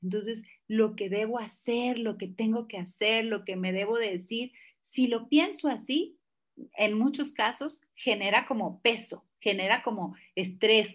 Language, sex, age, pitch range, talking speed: Spanish, female, 40-59, 195-260 Hz, 155 wpm